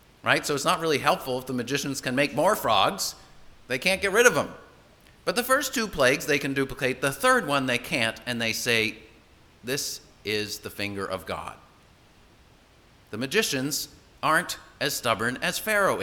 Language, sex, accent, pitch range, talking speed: English, male, American, 125-205 Hz, 180 wpm